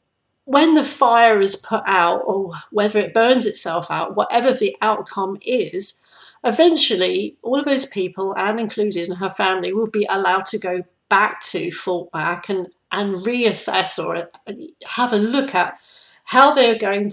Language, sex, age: English, female, 40-59